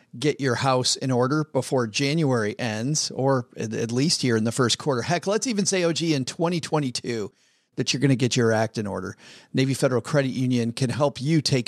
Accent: American